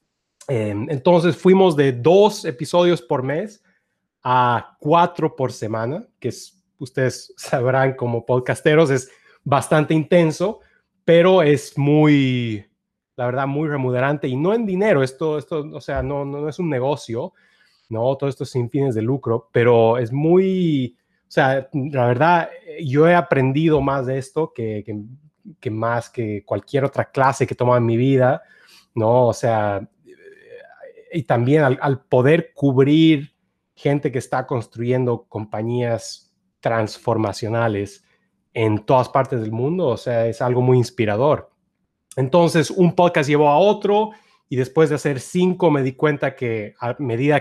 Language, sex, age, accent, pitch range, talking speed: Spanish, male, 30-49, Mexican, 125-160 Hz, 150 wpm